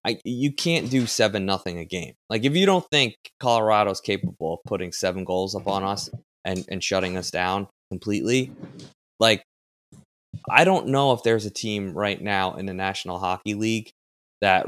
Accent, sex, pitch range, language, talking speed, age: American, male, 95-115 Hz, English, 180 wpm, 20-39